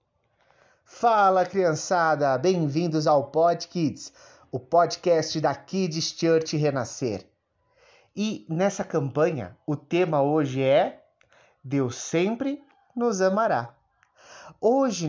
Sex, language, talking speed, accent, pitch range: male, Portuguese, 90 wpm, Brazilian, 125-185 Hz